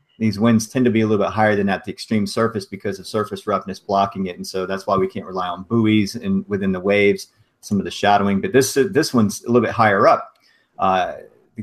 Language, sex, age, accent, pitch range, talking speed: English, male, 40-59, American, 100-115 Hz, 245 wpm